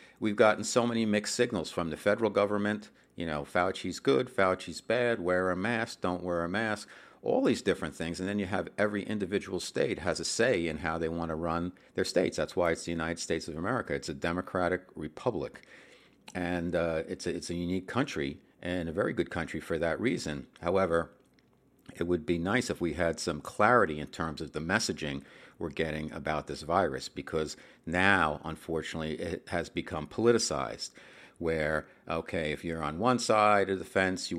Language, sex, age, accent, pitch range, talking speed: English, male, 50-69, American, 80-100 Hz, 190 wpm